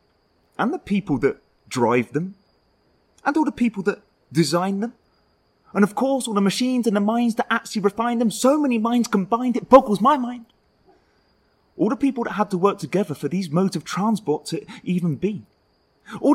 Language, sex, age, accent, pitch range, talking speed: English, male, 30-49, British, 155-220 Hz, 185 wpm